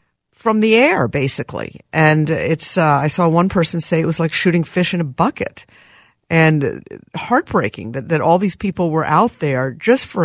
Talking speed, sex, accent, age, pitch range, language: 185 wpm, female, American, 50-69, 150-195 Hz, English